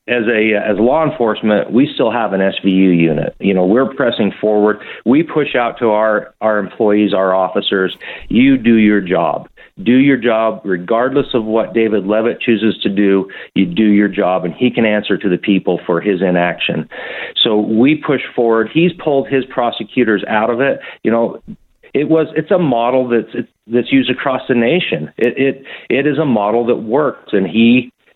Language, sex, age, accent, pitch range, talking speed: English, male, 40-59, American, 105-125 Hz, 190 wpm